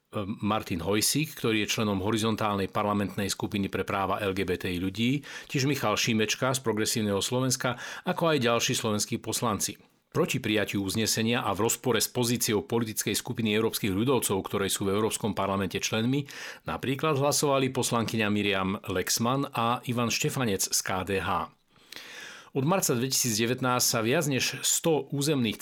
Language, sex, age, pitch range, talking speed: Slovak, male, 40-59, 105-130 Hz, 140 wpm